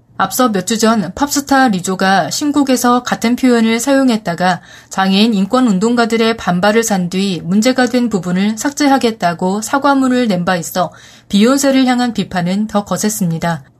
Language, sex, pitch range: Korean, female, 185-250 Hz